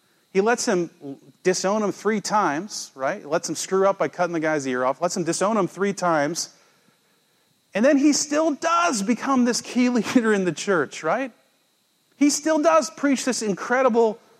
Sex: male